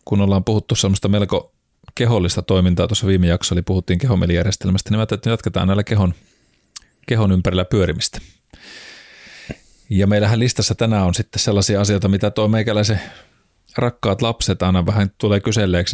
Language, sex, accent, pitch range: Finnish, male, native, 90-110 Hz